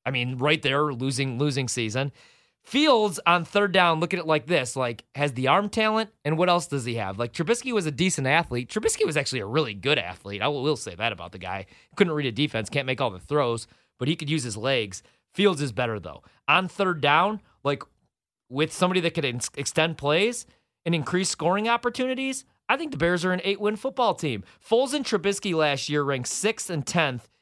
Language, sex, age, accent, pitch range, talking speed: English, male, 30-49, American, 125-170 Hz, 215 wpm